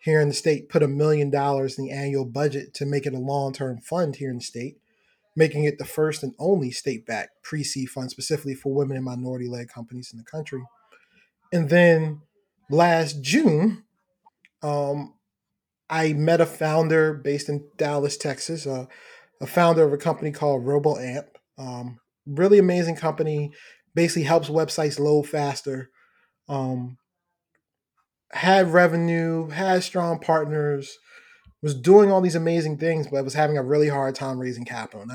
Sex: male